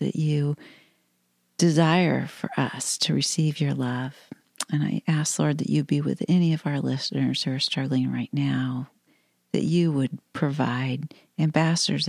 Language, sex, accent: English, female, American